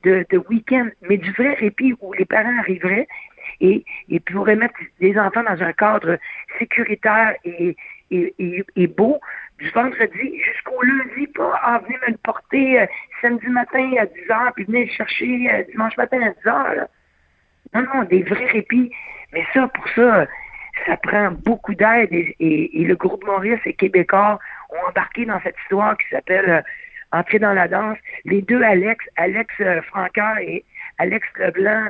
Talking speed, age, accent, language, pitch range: 175 wpm, 60-79, French, French, 190-235 Hz